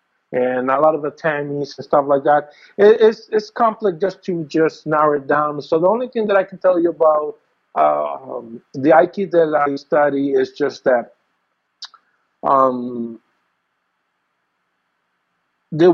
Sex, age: male, 50-69